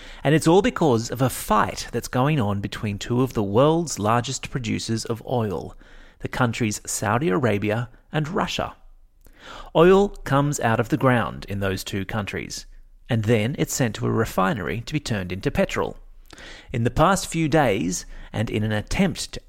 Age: 30-49